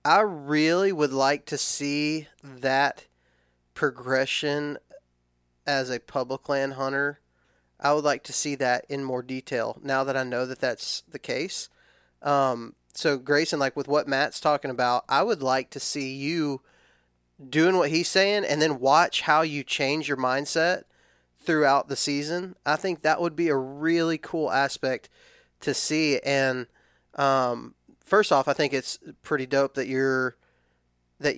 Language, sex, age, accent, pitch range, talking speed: English, male, 20-39, American, 130-150 Hz, 160 wpm